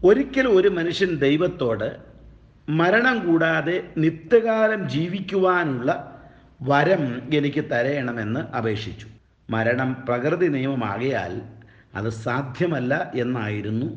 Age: 50-69